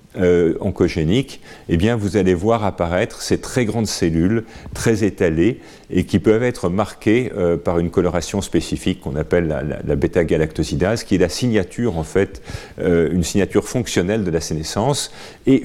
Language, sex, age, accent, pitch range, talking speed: French, male, 40-59, French, 85-115 Hz, 170 wpm